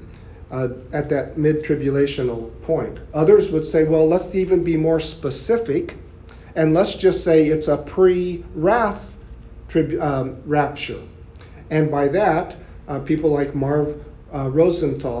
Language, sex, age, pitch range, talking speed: English, male, 40-59, 135-160 Hz, 120 wpm